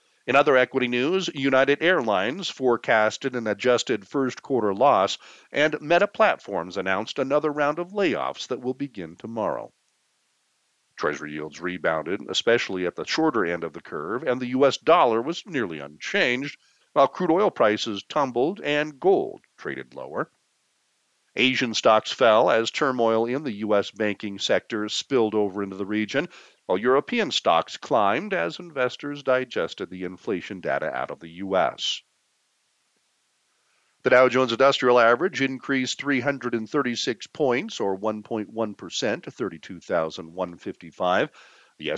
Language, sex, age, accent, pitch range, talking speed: English, male, 50-69, American, 105-145 Hz, 130 wpm